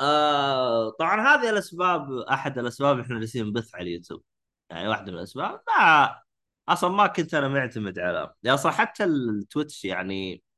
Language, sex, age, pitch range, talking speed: Arabic, male, 20-39, 120-160 Hz, 145 wpm